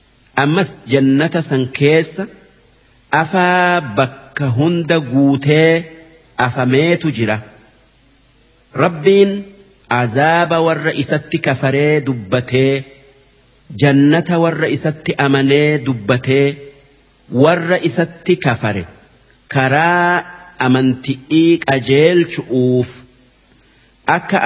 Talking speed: 65 wpm